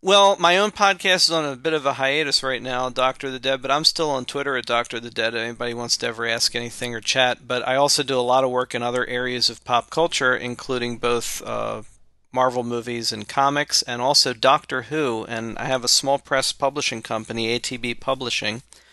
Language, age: English, 40-59